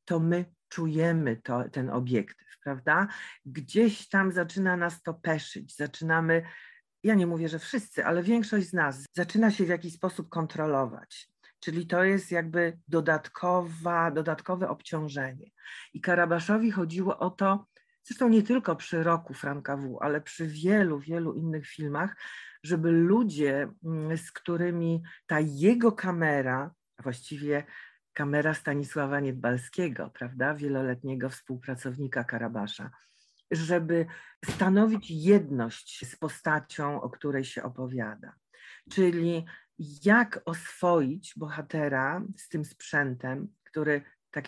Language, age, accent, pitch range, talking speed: Polish, 40-59, native, 140-175 Hz, 120 wpm